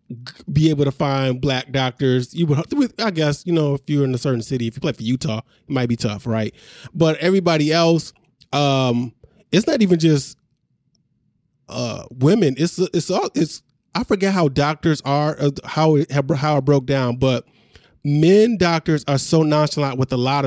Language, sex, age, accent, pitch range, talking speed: English, male, 20-39, American, 125-160 Hz, 180 wpm